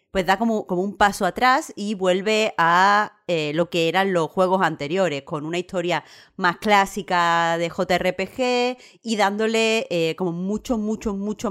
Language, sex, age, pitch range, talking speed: Spanish, female, 30-49, 165-195 Hz, 160 wpm